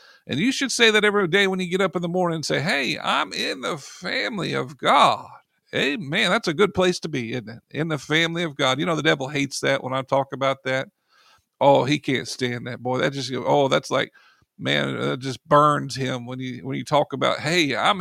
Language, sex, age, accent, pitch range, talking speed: English, male, 50-69, American, 135-190 Hz, 235 wpm